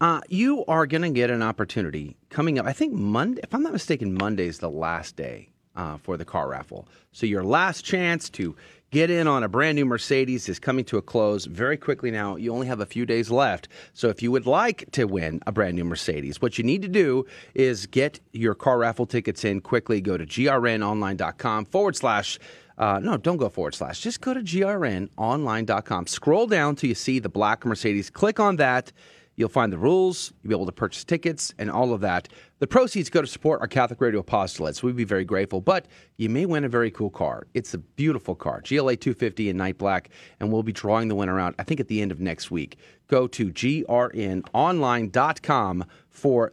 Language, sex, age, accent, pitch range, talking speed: English, male, 30-49, American, 105-150 Hz, 215 wpm